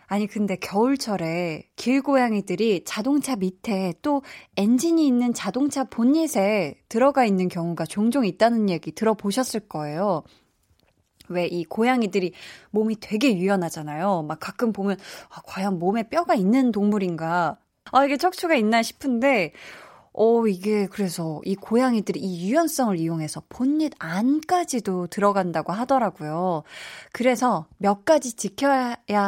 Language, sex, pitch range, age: Korean, female, 185-255 Hz, 20-39